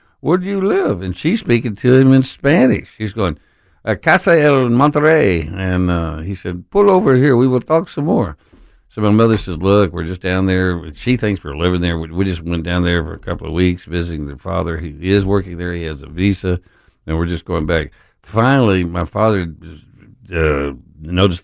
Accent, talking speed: American, 210 wpm